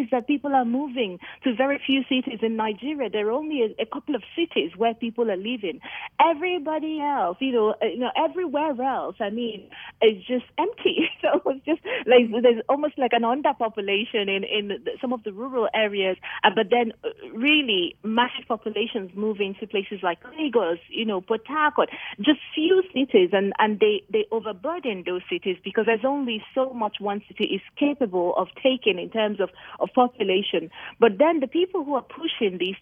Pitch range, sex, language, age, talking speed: 205-275 Hz, female, English, 30-49, 180 wpm